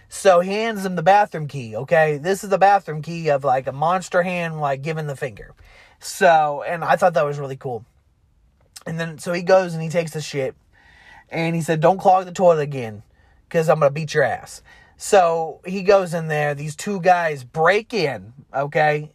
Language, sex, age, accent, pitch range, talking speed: English, male, 30-49, American, 140-180 Hz, 205 wpm